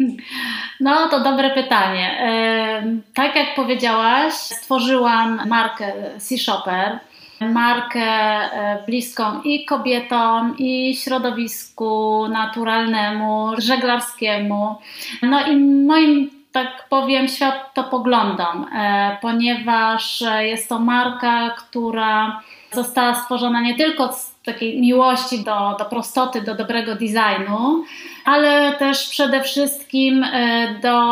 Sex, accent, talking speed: female, native, 90 wpm